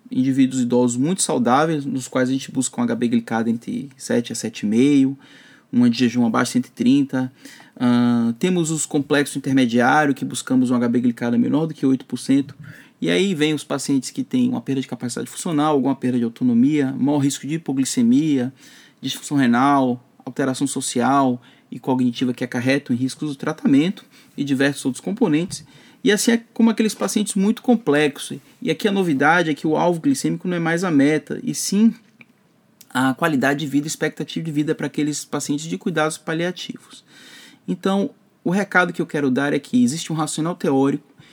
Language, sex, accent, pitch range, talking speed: Portuguese, male, Brazilian, 135-180 Hz, 175 wpm